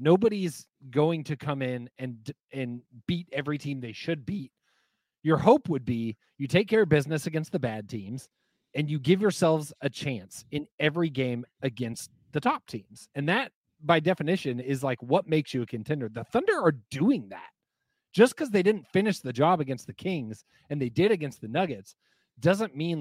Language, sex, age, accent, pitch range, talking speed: English, male, 30-49, American, 125-170 Hz, 190 wpm